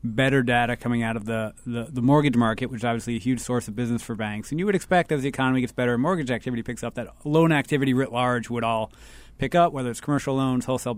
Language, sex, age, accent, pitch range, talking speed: English, male, 30-49, American, 120-140 Hz, 255 wpm